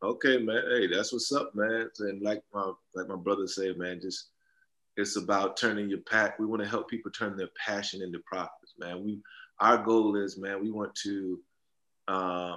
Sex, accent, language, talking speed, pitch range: male, American, English, 195 wpm, 100-110 Hz